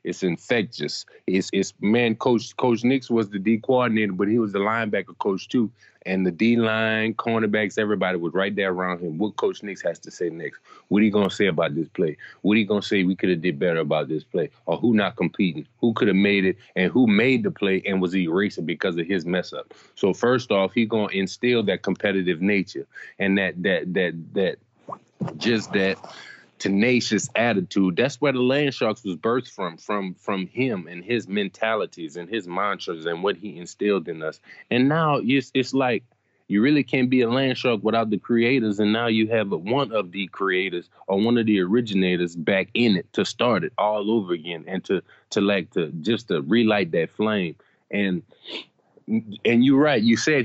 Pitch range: 95-115 Hz